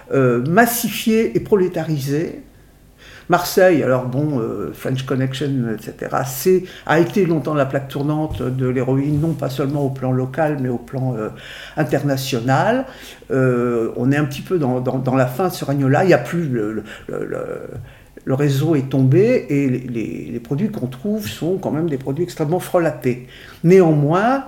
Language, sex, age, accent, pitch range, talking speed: French, male, 50-69, French, 130-185 Hz, 175 wpm